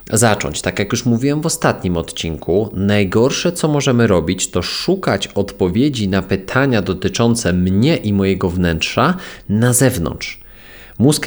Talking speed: 135 wpm